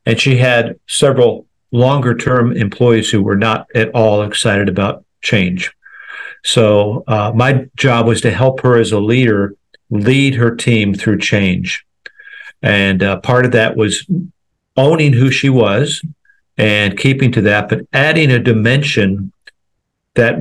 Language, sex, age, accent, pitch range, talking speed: English, male, 50-69, American, 110-130 Hz, 145 wpm